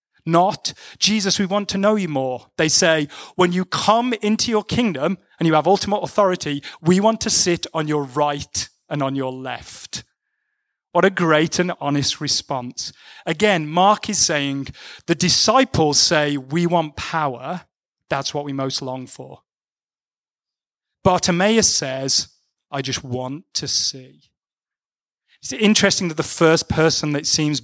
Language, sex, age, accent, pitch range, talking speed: English, male, 30-49, British, 140-180 Hz, 150 wpm